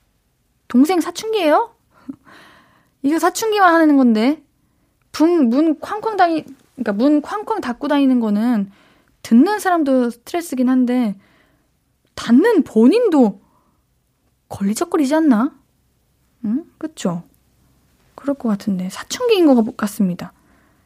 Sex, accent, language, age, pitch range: female, native, Korean, 20-39, 220-310 Hz